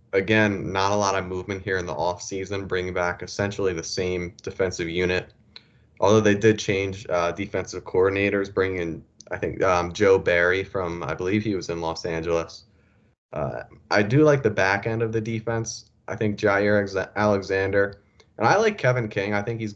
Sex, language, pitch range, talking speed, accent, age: male, English, 95-110 Hz, 190 wpm, American, 20-39